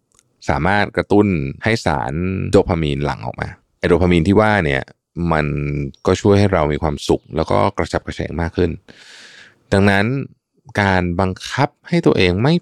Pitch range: 75-110 Hz